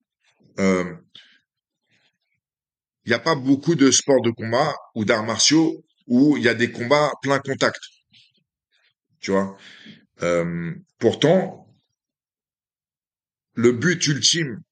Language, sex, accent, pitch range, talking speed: French, male, French, 105-145 Hz, 115 wpm